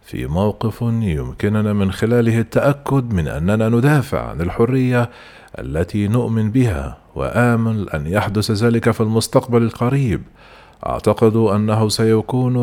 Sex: male